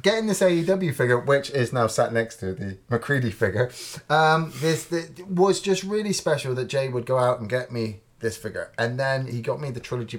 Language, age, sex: English, 30-49, male